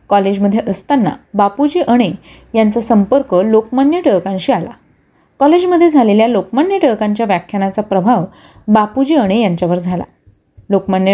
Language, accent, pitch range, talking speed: Marathi, native, 195-260 Hz, 110 wpm